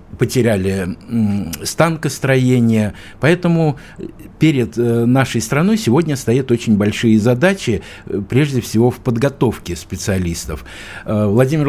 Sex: male